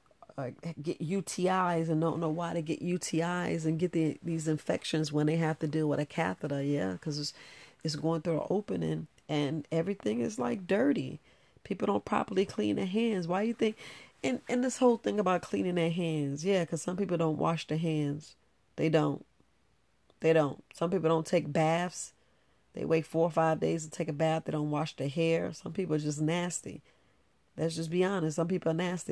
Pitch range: 150-180 Hz